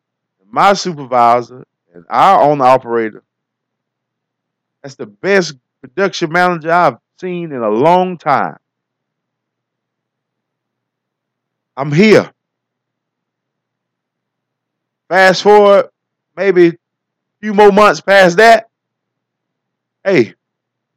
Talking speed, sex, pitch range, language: 85 wpm, male, 125-180 Hz, English